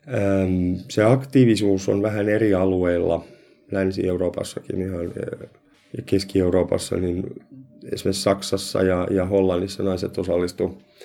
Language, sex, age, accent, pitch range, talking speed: Finnish, male, 30-49, native, 90-105 Hz, 100 wpm